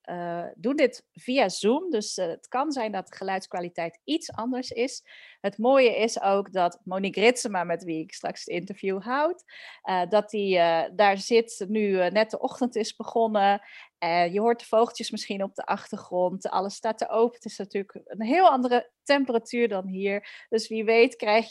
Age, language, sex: 40-59, Dutch, female